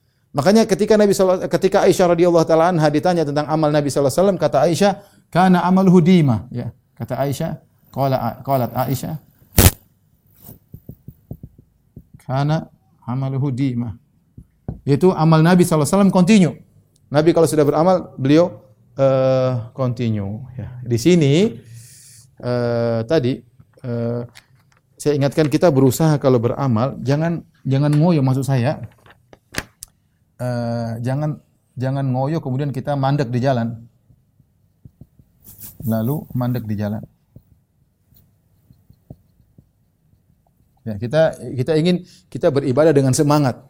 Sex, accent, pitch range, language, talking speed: male, native, 120-160 Hz, Indonesian, 100 wpm